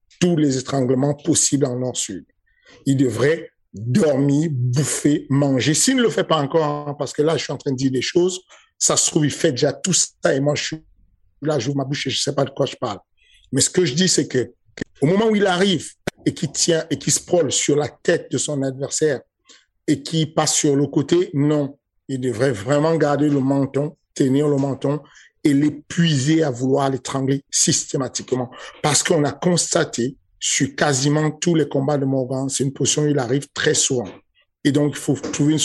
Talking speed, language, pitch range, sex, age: 205 wpm, French, 135-160 Hz, male, 50-69